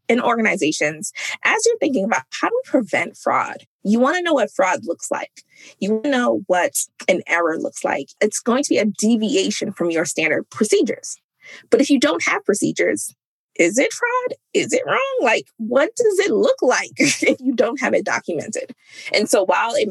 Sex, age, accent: female, 20-39, American